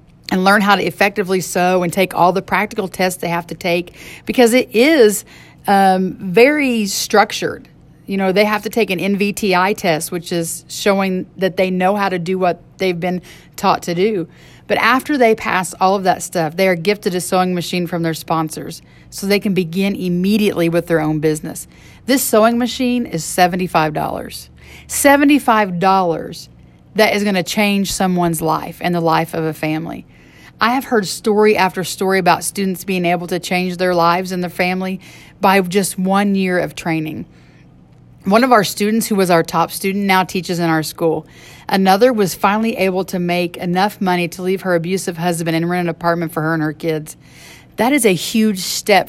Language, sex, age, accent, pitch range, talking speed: English, female, 40-59, American, 170-200 Hz, 190 wpm